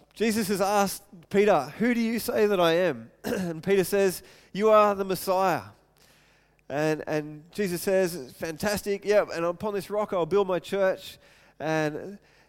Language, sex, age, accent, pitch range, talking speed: English, male, 20-39, Australian, 155-210 Hz, 165 wpm